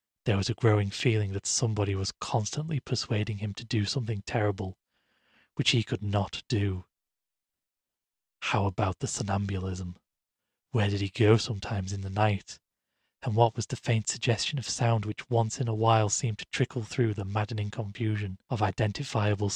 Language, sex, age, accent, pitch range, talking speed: English, male, 40-59, British, 100-120 Hz, 165 wpm